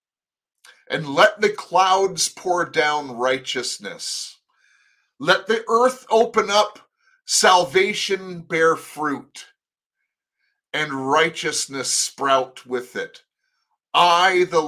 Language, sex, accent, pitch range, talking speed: English, male, American, 135-210 Hz, 90 wpm